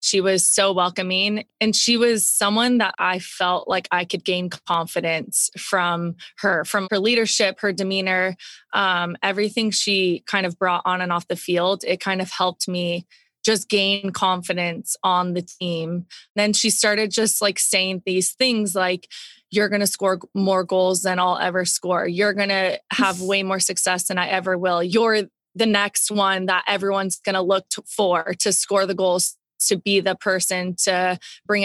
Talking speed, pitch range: 180 wpm, 185-210 Hz